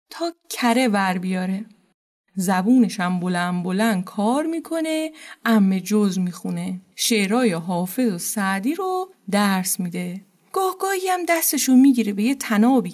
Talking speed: 120 wpm